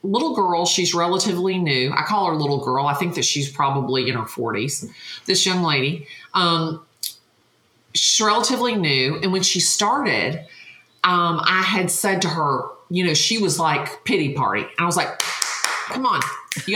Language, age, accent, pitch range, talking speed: English, 40-59, American, 165-215 Hz, 170 wpm